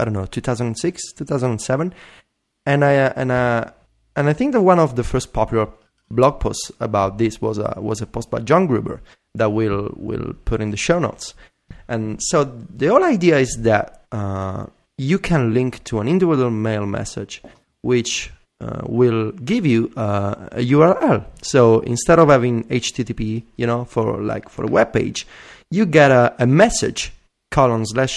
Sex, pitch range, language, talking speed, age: male, 110-140 Hz, English, 175 wpm, 30-49